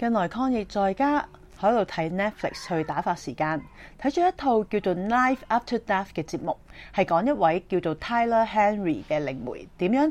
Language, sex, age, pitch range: Chinese, female, 30-49, 160-215 Hz